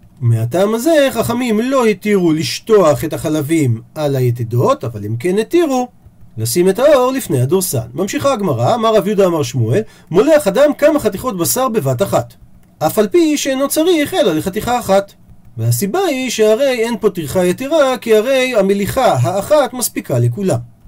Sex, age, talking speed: male, 40-59, 155 wpm